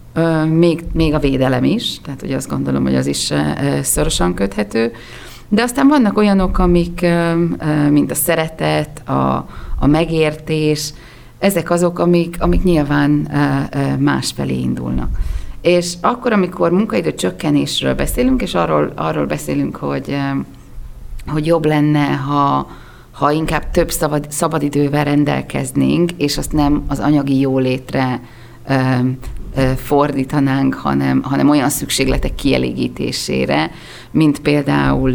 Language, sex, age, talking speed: Hungarian, female, 30-49, 115 wpm